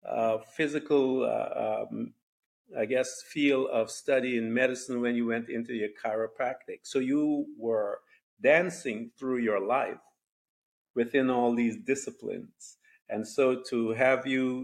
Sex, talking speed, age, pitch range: male, 135 wpm, 50-69, 115-140 Hz